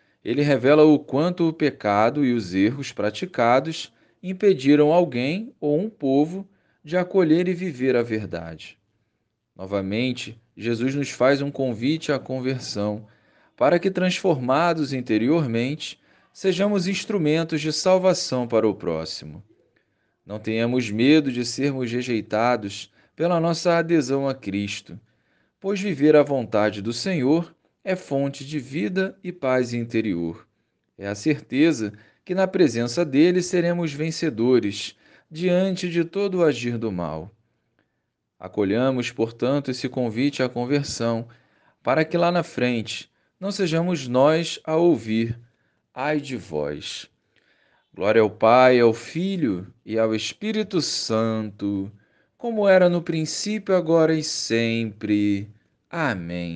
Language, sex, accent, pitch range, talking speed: Portuguese, male, Brazilian, 110-170 Hz, 125 wpm